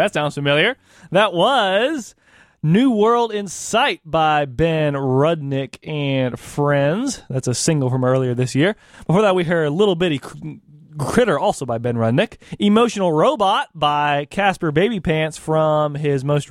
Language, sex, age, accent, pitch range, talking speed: English, male, 20-39, American, 140-195 Hz, 150 wpm